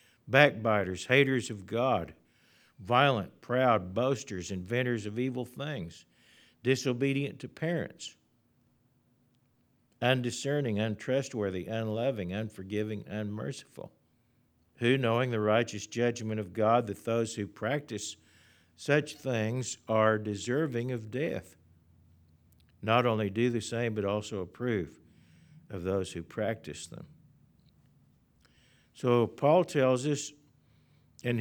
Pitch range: 105-125 Hz